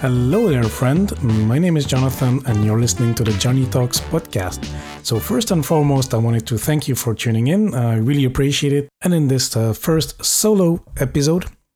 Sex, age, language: male, 40-59, English